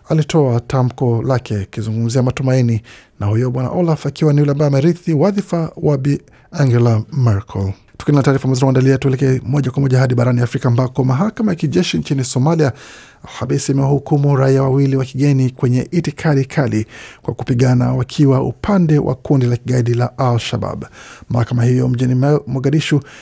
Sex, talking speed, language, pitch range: male, 150 wpm, Swahili, 125-150 Hz